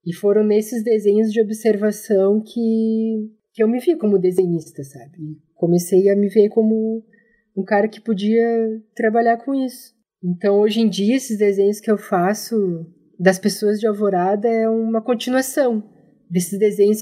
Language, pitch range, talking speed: Portuguese, 190-230 Hz, 155 wpm